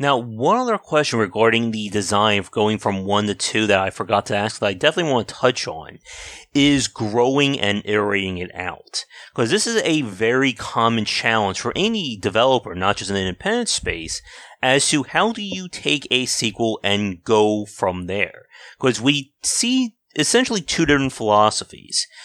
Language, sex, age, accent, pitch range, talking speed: English, male, 30-49, American, 105-145 Hz, 180 wpm